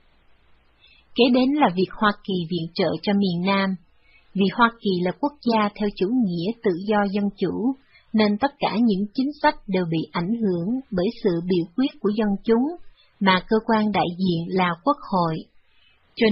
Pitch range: 185-235 Hz